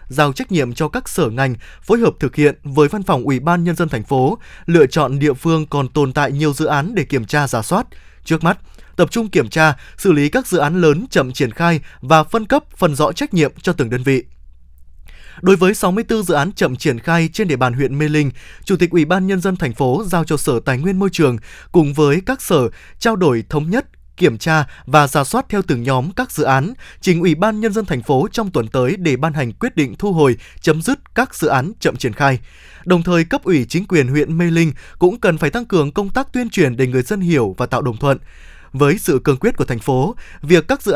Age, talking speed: 20-39, 250 wpm